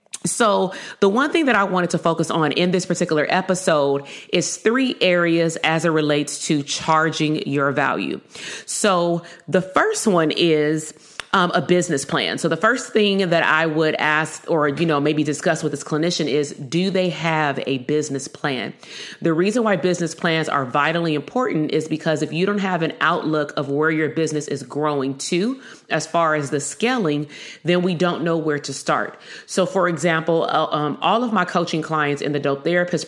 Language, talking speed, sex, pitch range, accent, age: English, 190 wpm, female, 150-180 Hz, American, 30-49